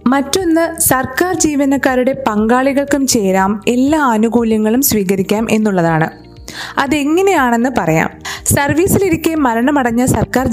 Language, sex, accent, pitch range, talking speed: Malayalam, female, native, 205-280 Hz, 80 wpm